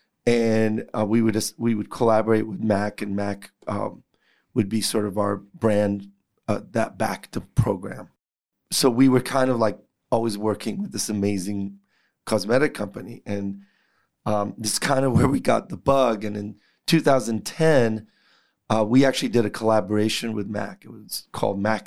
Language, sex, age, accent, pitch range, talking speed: English, male, 30-49, American, 105-120 Hz, 170 wpm